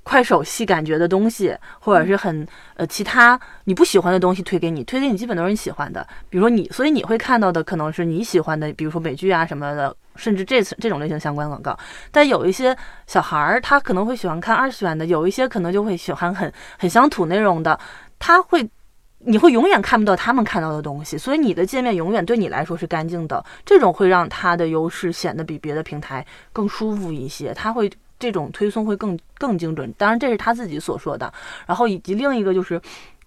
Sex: female